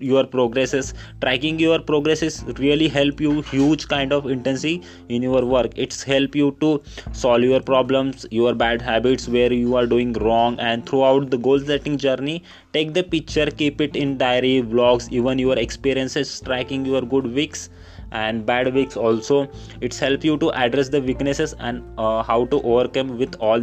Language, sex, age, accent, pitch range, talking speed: Hindi, male, 20-39, native, 125-150 Hz, 175 wpm